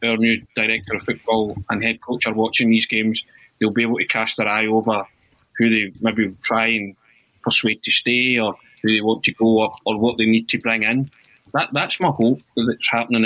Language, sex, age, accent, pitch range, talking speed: English, male, 20-39, British, 110-130 Hz, 220 wpm